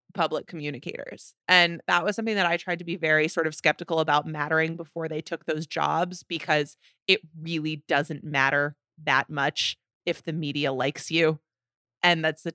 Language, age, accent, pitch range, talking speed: English, 20-39, American, 155-190 Hz, 175 wpm